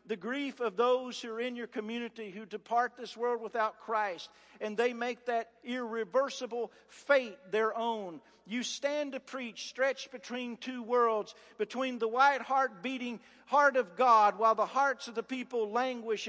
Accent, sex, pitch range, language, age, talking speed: American, male, 215-260 Hz, English, 50-69, 170 wpm